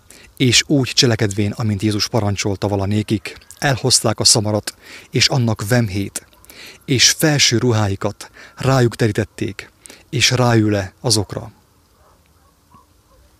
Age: 30-49